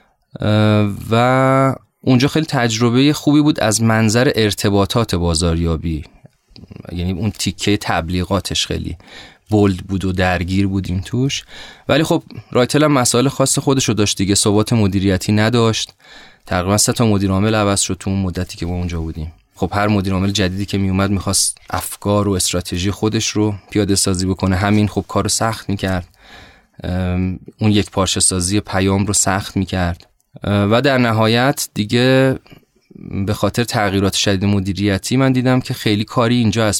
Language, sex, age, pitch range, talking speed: Persian, male, 20-39, 100-120 Hz, 145 wpm